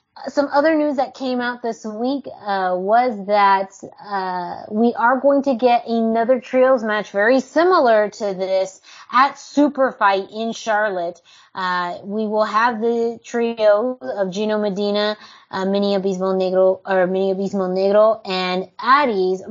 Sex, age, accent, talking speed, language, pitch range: female, 20-39, American, 150 wpm, English, 195-245 Hz